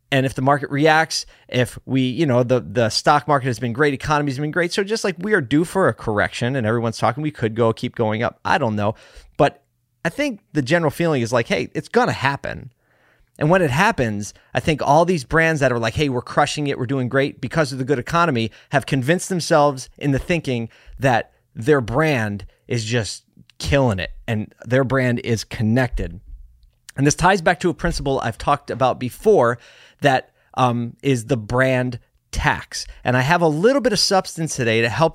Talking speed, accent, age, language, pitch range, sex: 210 wpm, American, 30-49, English, 115-150 Hz, male